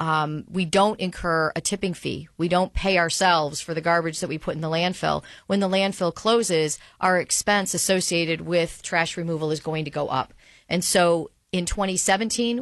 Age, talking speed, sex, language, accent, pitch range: 40-59, 185 wpm, female, English, American, 165-190 Hz